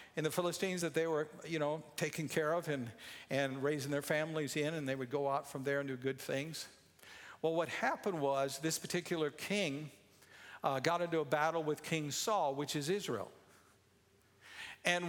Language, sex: English, male